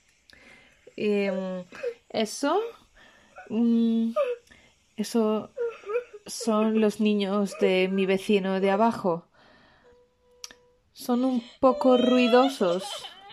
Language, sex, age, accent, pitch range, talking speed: Spanish, female, 20-39, Spanish, 190-280 Hz, 65 wpm